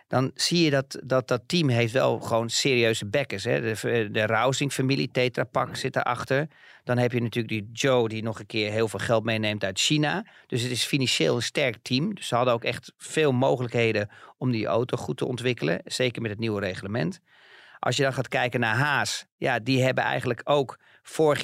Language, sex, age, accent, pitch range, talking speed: Dutch, male, 40-59, Dutch, 110-130 Hz, 210 wpm